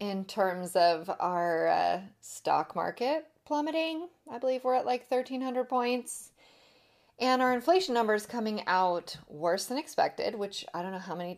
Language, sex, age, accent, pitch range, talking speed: English, female, 30-49, American, 165-210 Hz, 160 wpm